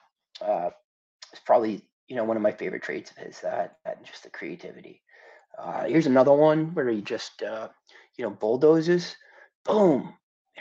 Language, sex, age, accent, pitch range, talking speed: English, male, 30-49, American, 140-220 Hz, 175 wpm